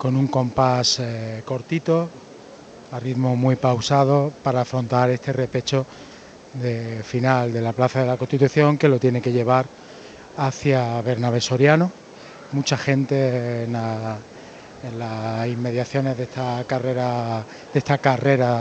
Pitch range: 125-140 Hz